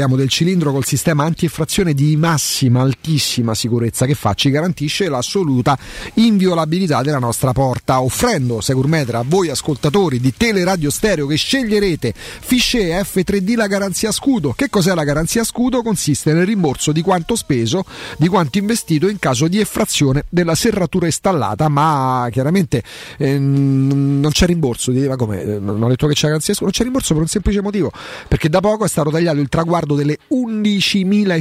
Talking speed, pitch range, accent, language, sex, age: 150 wpm, 140-195 Hz, native, Italian, male, 40-59